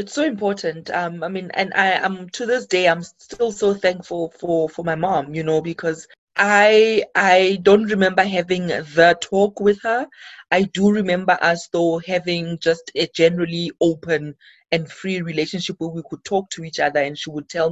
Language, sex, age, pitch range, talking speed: English, female, 30-49, 170-225 Hz, 190 wpm